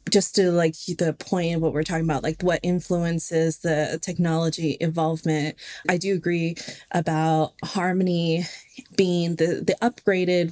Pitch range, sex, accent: 165-185 Hz, female, American